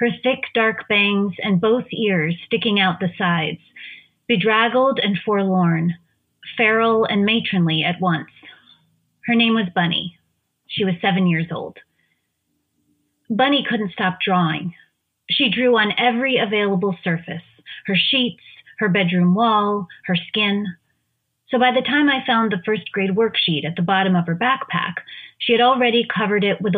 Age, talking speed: 30-49, 150 wpm